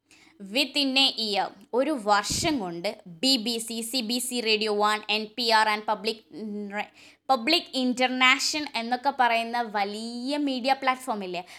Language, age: Malayalam, 20-39